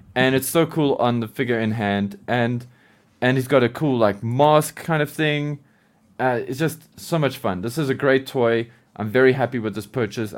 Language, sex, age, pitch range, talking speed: English, male, 20-39, 110-140 Hz, 215 wpm